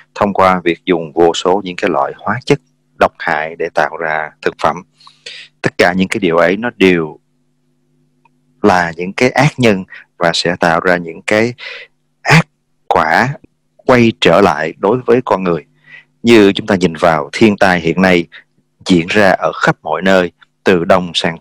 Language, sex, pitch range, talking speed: English, male, 85-110 Hz, 180 wpm